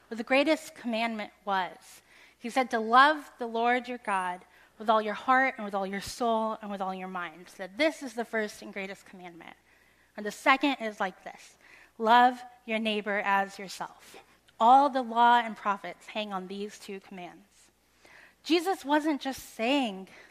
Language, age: English, 10-29